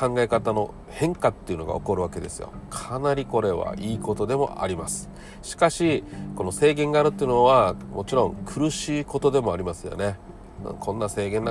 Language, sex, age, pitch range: Japanese, male, 40-59, 90-135 Hz